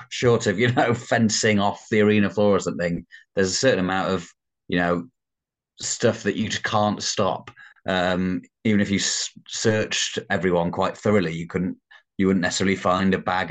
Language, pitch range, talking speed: English, 90-105 Hz, 180 wpm